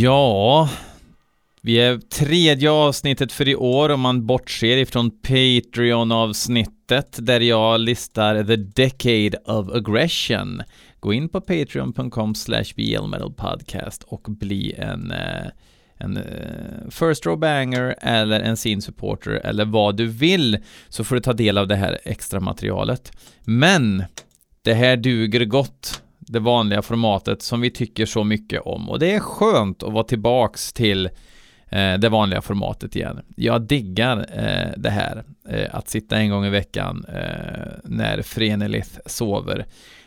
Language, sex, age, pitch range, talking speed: Swedish, male, 30-49, 105-125 Hz, 135 wpm